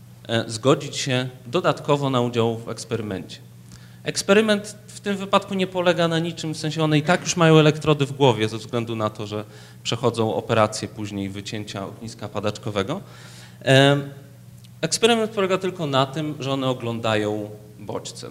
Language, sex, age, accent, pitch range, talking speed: Polish, male, 30-49, native, 105-155 Hz, 150 wpm